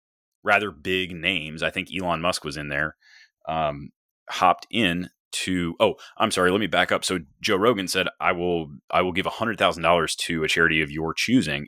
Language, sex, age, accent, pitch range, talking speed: English, male, 30-49, American, 80-95 Hz, 190 wpm